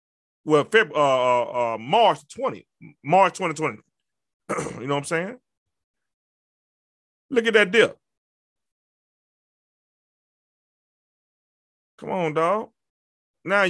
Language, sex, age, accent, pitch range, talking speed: English, male, 30-49, American, 190-280 Hz, 90 wpm